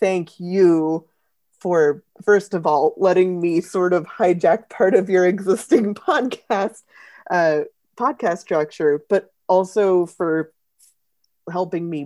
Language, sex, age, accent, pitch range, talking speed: English, female, 20-39, American, 155-190 Hz, 120 wpm